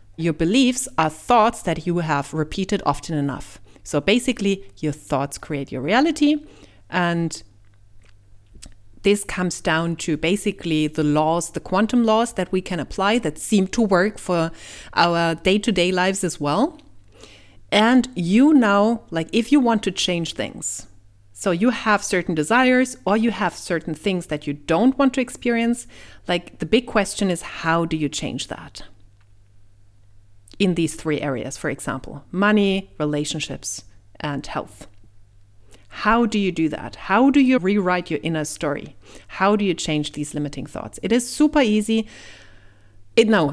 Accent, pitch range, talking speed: German, 140-205 Hz, 155 wpm